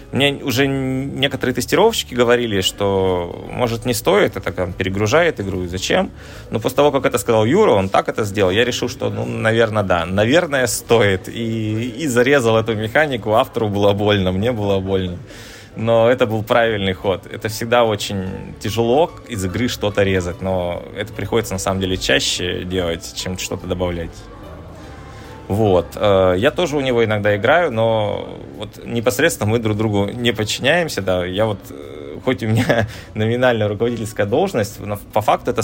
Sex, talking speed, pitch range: male, 160 wpm, 95-115 Hz